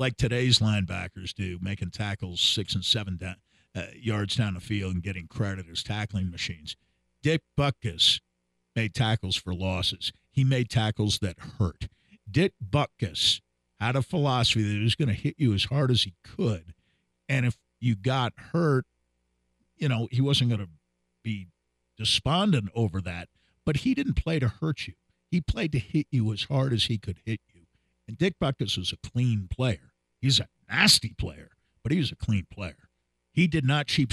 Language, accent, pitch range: English, American, 90-130 Hz